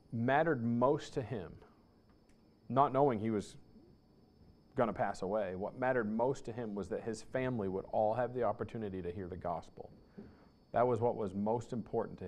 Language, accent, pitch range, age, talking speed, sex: English, American, 105-125 Hz, 40-59, 180 wpm, male